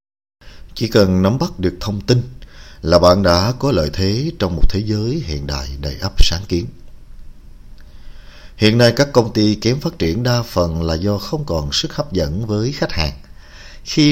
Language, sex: Vietnamese, male